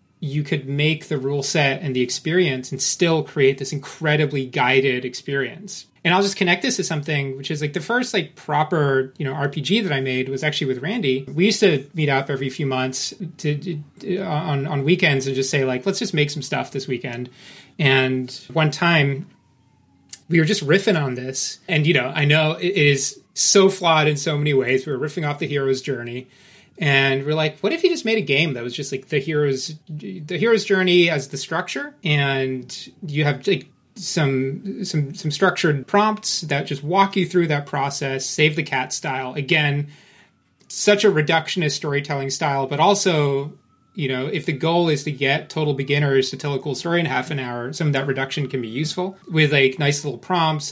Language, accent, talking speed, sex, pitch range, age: English, American, 205 wpm, male, 135-170 Hz, 30-49